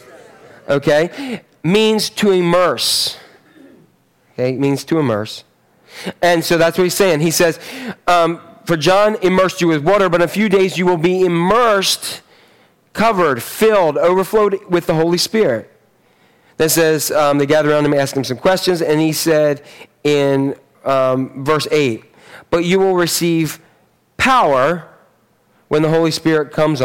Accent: American